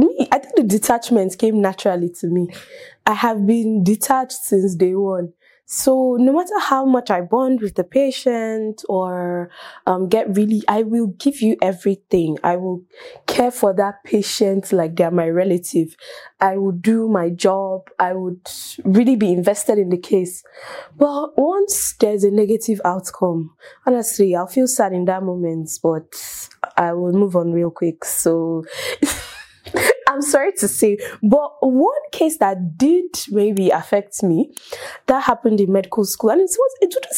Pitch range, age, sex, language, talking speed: 185-255 Hz, 10-29, female, English, 160 wpm